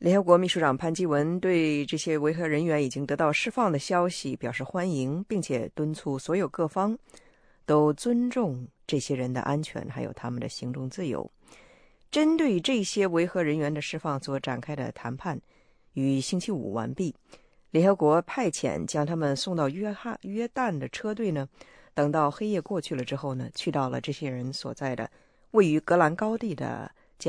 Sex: female